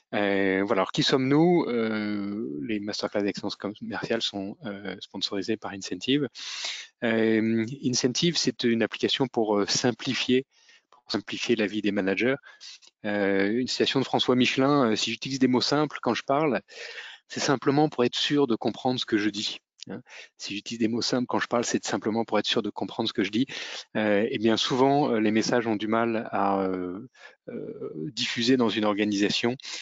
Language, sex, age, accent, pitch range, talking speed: French, male, 30-49, French, 100-120 Hz, 175 wpm